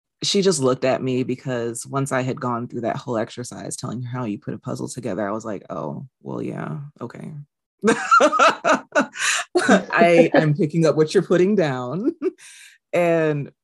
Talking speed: 165 wpm